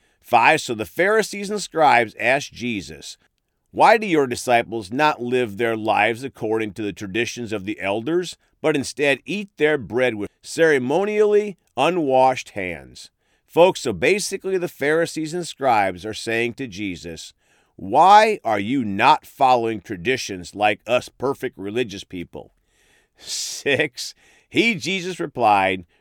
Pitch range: 105-165 Hz